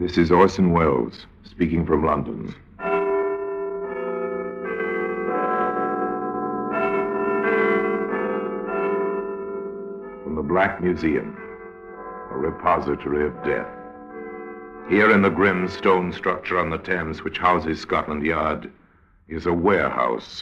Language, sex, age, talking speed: English, male, 60-79, 90 wpm